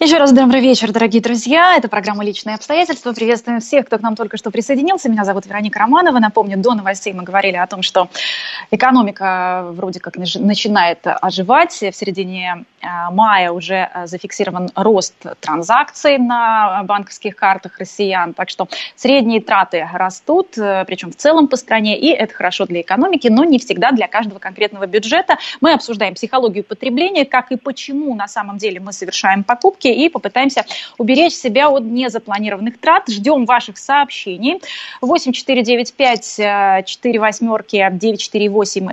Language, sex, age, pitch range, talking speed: Russian, female, 20-39, 195-265 Hz, 145 wpm